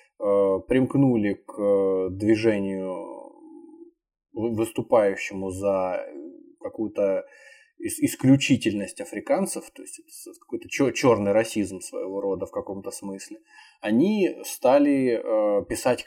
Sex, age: male, 20-39